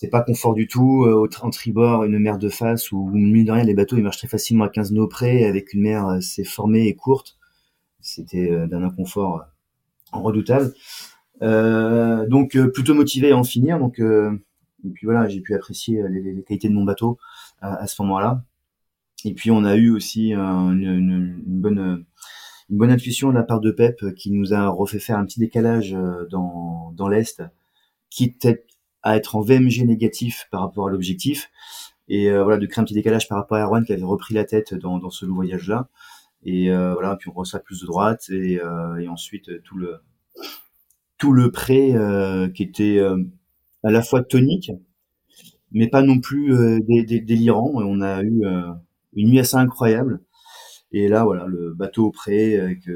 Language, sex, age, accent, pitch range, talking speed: French, male, 30-49, French, 95-115 Hz, 205 wpm